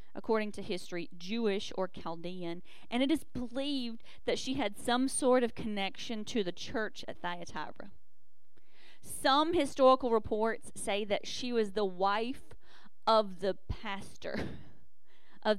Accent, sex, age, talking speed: American, female, 40-59, 135 wpm